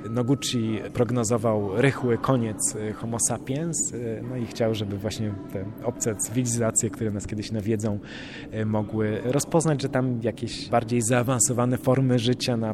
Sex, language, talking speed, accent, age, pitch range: male, Polish, 125 wpm, native, 20-39, 110-140 Hz